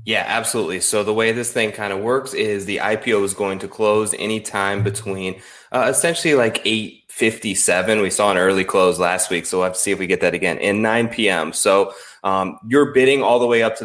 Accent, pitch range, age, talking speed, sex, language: American, 95-125 Hz, 20-39, 220 wpm, male, English